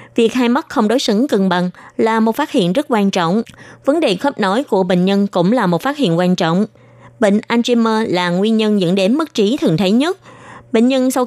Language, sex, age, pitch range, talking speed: Vietnamese, female, 20-39, 185-255 Hz, 235 wpm